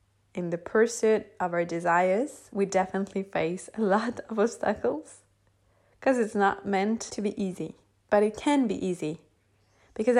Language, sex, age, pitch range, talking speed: English, female, 20-39, 175-205 Hz, 155 wpm